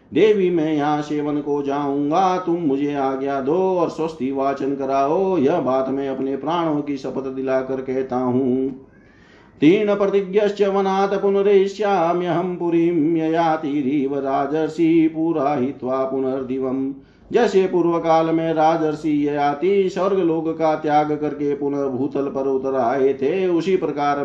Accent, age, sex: native, 50-69, male